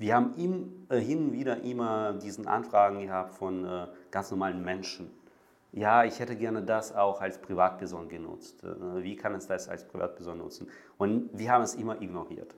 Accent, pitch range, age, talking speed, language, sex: German, 95-125 Hz, 40-59, 165 wpm, English, male